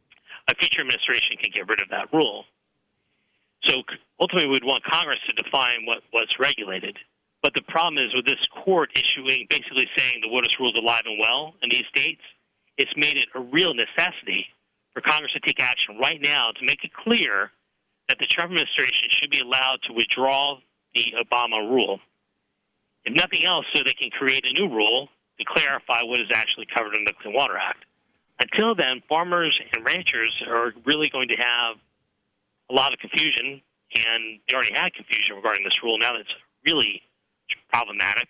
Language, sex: English, male